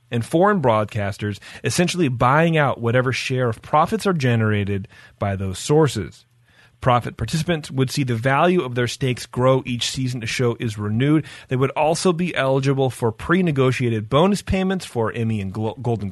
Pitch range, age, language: 110-135 Hz, 30-49, English